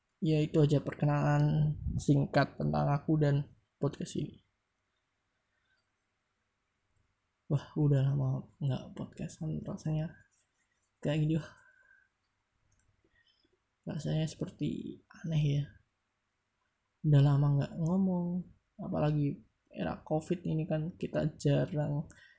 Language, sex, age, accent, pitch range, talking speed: Indonesian, male, 20-39, native, 95-155 Hz, 90 wpm